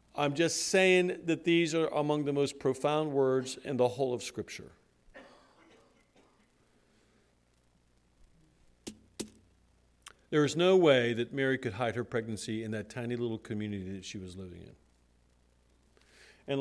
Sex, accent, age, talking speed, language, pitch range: male, American, 50-69, 135 wpm, English, 95-140 Hz